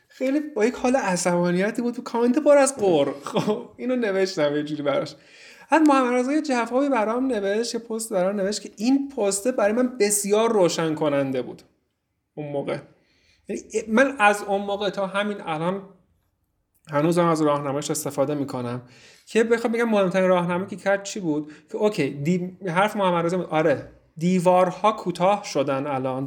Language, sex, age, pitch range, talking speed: Persian, male, 30-49, 145-200 Hz, 165 wpm